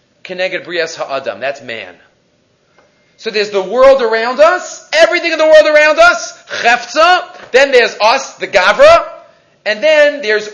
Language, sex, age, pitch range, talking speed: English, male, 30-49, 210-300 Hz, 125 wpm